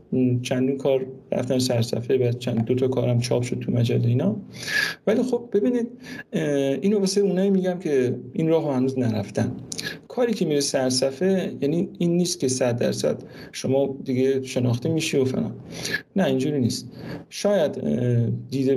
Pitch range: 125-185 Hz